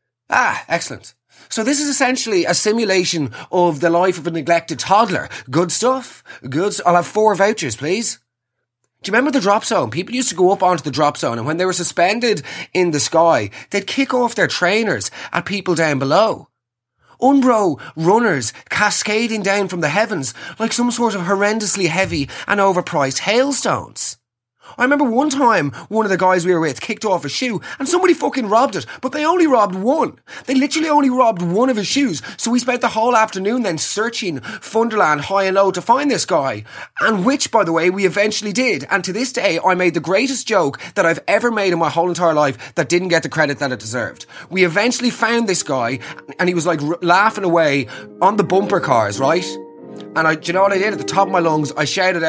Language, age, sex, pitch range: English, 30-49, male, 165-225 Hz